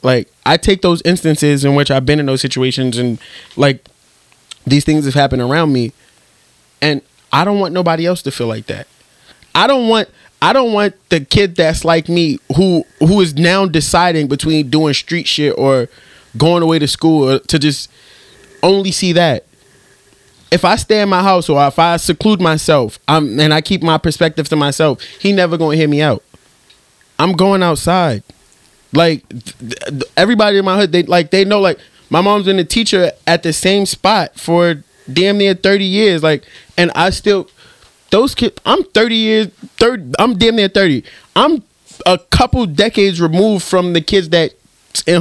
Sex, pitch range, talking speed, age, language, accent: male, 145-190 Hz, 185 wpm, 20-39, English, American